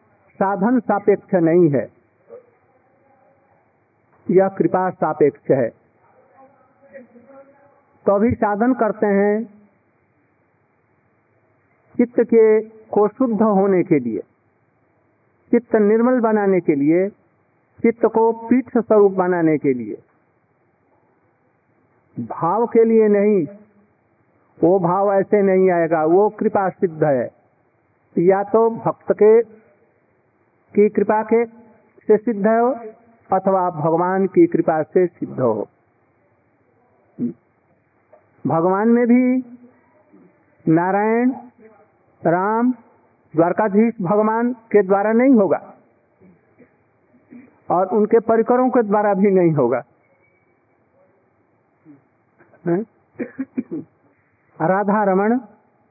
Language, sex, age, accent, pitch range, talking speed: Hindi, male, 50-69, native, 185-230 Hz, 90 wpm